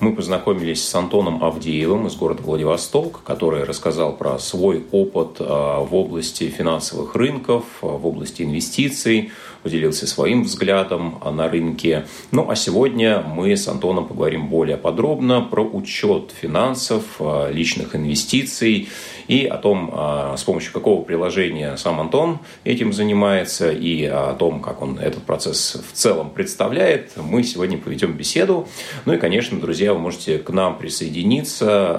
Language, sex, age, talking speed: Russian, male, 30-49, 135 wpm